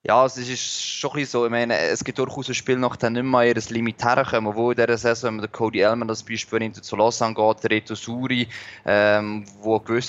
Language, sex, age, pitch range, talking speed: German, male, 20-39, 110-130 Hz, 245 wpm